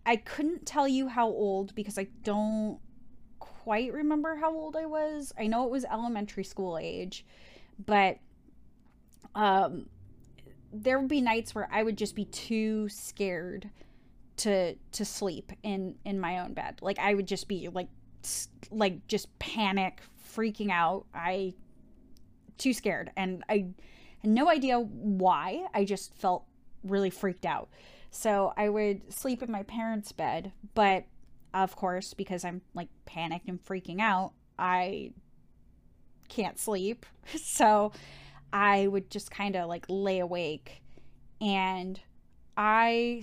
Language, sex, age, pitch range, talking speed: English, female, 10-29, 190-220 Hz, 140 wpm